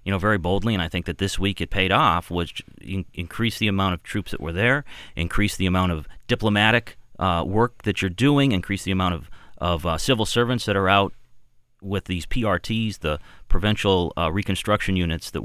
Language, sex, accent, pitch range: English, male, American, 90-115 Hz